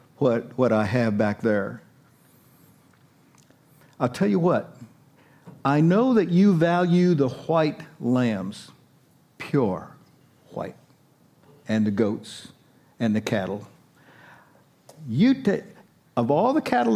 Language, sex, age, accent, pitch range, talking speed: English, male, 60-79, American, 125-185 Hz, 115 wpm